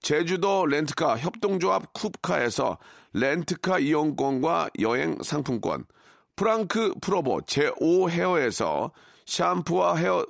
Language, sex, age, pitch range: Korean, male, 40-59, 145-205 Hz